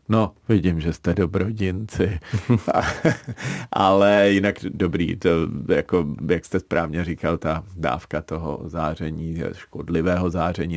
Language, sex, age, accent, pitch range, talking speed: Czech, male, 40-59, native, 80-95 Hz, 110 wpm